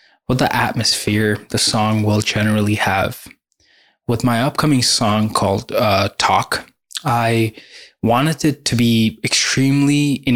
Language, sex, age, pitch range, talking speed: English, male, 20-39, 105-125 Hz, 125 wpm